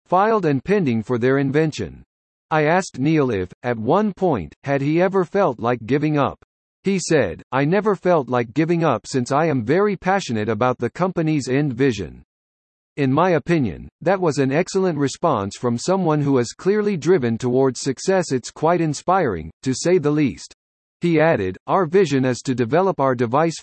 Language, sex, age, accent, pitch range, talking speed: English, male, 50-69, American, 120-175 Hz, 180 wpm